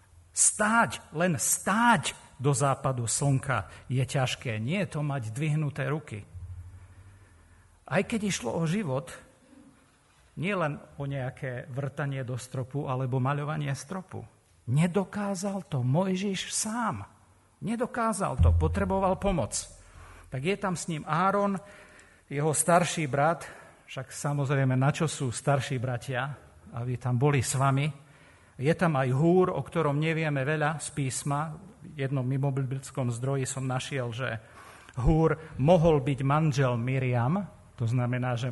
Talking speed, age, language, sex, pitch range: 130 wpm, 50-69, Slovak, male, 115-150 Hz